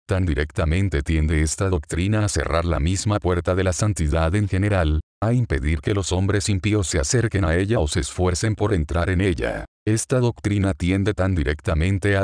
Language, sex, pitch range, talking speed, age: Spanish, male, 80-100 Hz, 185 wpm, 40-59